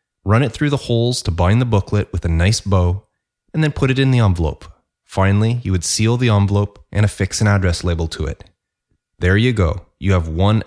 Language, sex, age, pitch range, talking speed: English, male, 30-49, 90-125 Hz, 220 wpm